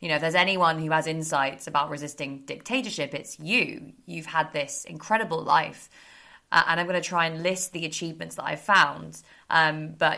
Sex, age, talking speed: female, 20-39, 195 wpm